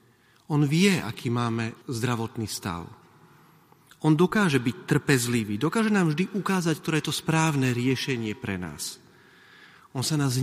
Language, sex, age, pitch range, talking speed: Slovak, male, 40-59, 110-145 Hz, 140 wpm